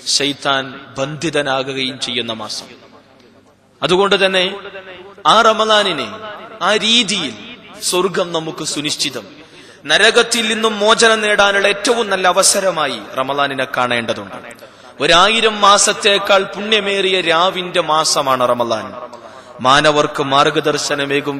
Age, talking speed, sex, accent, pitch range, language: 30-49, 80 wpm, male, native, 150-200 Hz, Malayalam